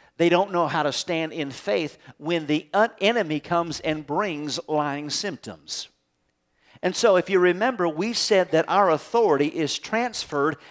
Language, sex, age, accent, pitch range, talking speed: English, male, 50-69, American, 150-200 Hz, 155 wpm